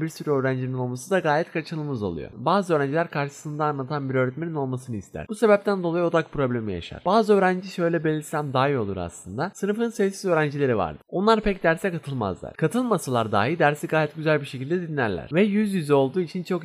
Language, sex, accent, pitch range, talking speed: Turkish, male, native, 120-175 Hz, 185 wpm